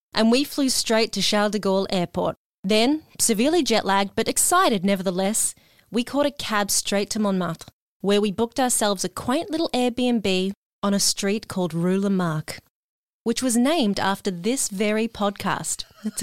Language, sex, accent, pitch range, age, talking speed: English, female, Australian, 200-250 Hz, 20-39, 165 wpm